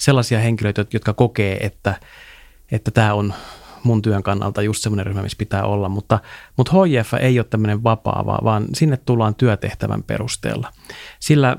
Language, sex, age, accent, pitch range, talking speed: Finnish, male, 30-49, native, 105-120 Hz, 155 wpm